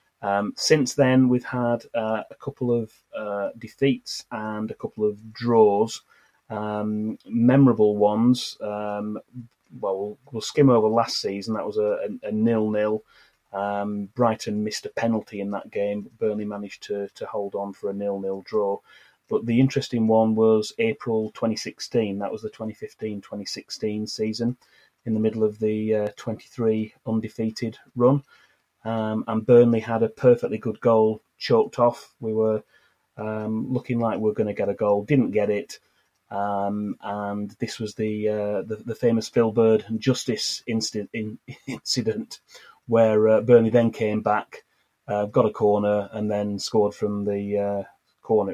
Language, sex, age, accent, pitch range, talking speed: English, male, 30-49, British, 105-115 Hz, 160 wpm